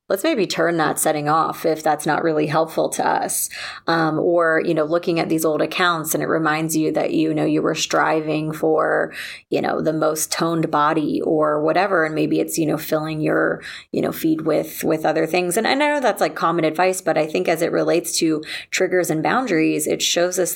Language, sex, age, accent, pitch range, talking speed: English, female, 30-49, American, 155-170 Hz, 220 wpm